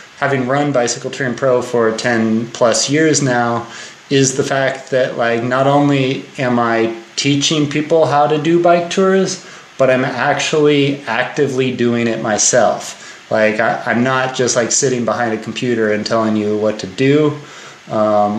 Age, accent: 30-49, American